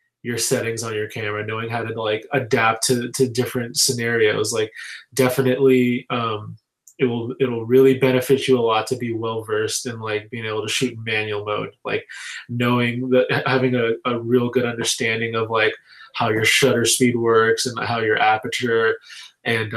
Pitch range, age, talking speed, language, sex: 115-135 Hz, 20-39, 180 wpm, English, male